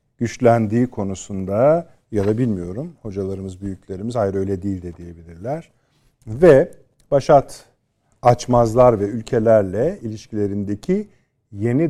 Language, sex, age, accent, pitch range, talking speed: Turkish, male, 50-69, native, 100-130 Hz, 95 wpm